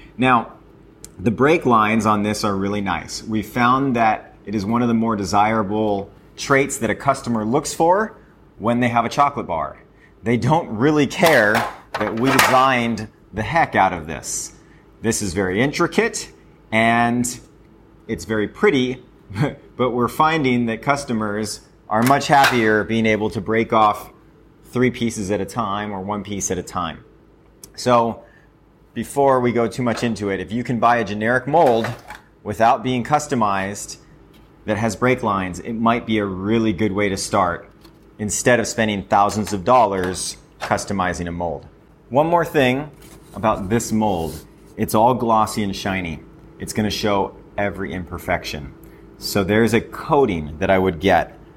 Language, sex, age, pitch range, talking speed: English, male, 30-49, 100-125 Hz, 160 wpm